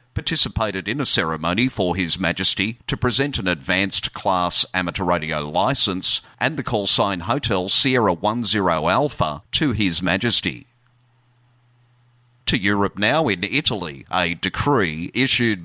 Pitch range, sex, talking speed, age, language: 90-120 Hz, male, 125 wpm, 50-69, English